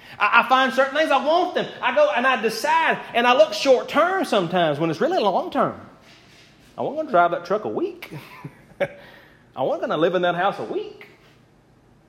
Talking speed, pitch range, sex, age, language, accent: 210 wpm, 170-235 Hz, male, 30-49, English, American